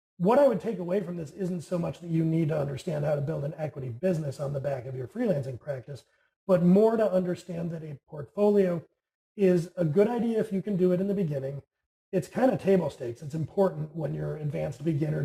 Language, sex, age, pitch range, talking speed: English, male, 30-49, 145-185 Hz, 230 wpm